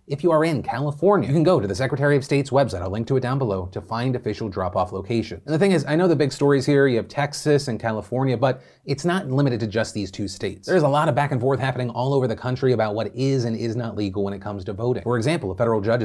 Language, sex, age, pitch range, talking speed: English, male, 30-49, 105-135 Hz, 290 wpm